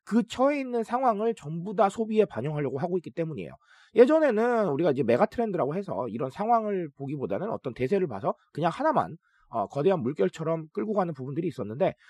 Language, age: Korean, 40-59